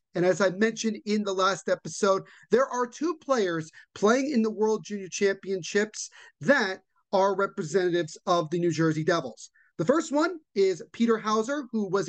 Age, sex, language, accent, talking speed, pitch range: 30-49, male, English, American, 170 wpm, 180-230 Hz